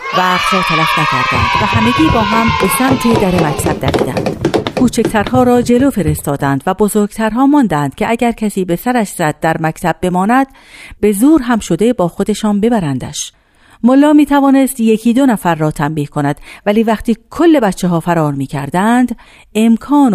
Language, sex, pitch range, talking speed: Persian, female, 155-245 Hz, 150 wpm